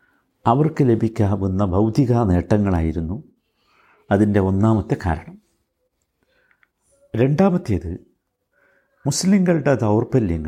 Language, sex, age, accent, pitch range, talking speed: Malayalam, male, 60-79, native, 100-145 Hz, 55 wpm